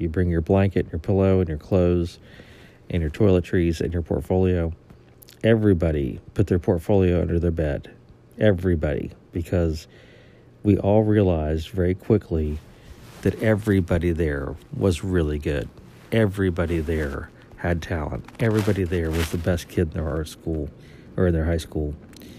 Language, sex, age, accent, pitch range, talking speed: English, male, 50-69, American, 85-105 Hz, 145 wpm